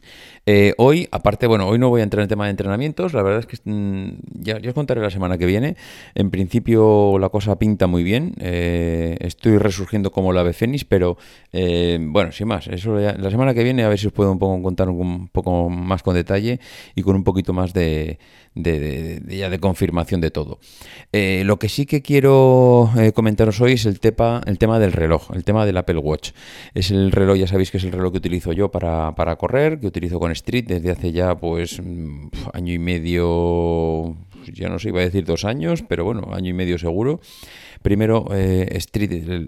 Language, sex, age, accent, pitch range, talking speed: Spanish, male, 30-49, Spanish, 90-105 Hz, 215 wpm